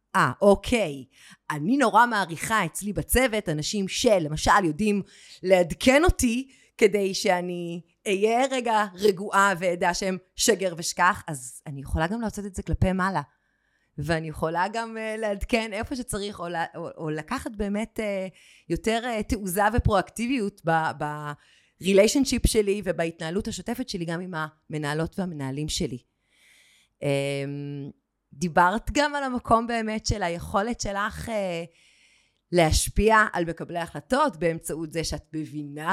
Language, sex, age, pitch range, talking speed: Hebrew, female, 30-49, 160-215 Hz, 125 wpm